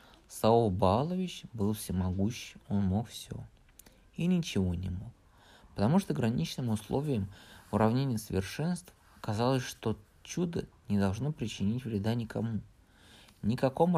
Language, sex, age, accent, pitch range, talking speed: Russian, male, 20-39, native, 100-140 Hz, 110 wpm